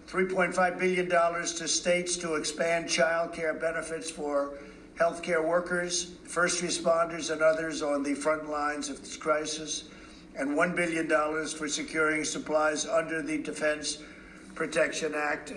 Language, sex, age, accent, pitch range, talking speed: English, male, 50-69, American, 135-155 Hz, 125 wpm